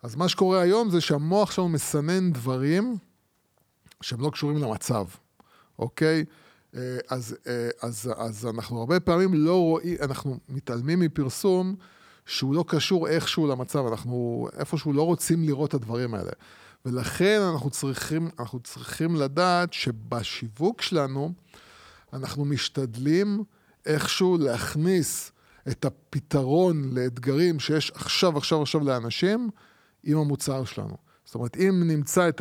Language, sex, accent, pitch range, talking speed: Hebrew, male, Italian, 125-165 Hz, 120 wpm